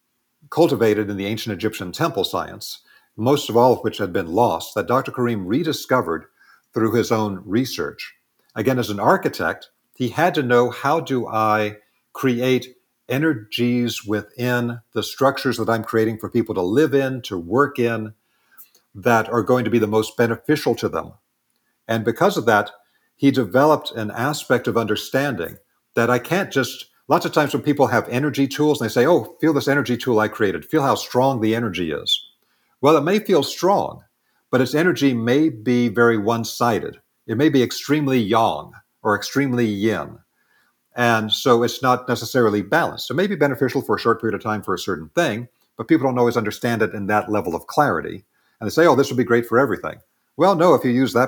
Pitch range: 110-135 Hz